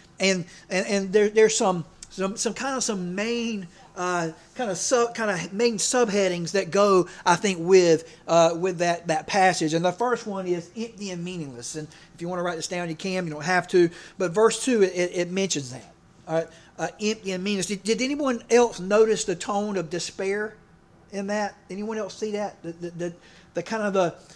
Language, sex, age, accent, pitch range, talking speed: English, male, 40-59, American, 170-210 Hz, 215 wpm